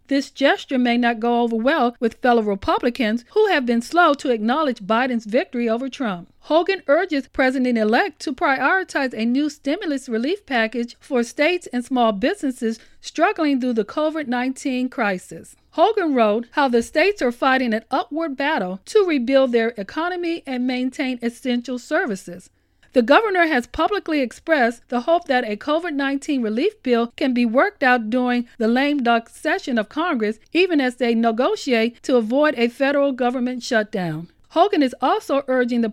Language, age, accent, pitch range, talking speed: English, 40-59, American, 235-305 Hz, 160 wpm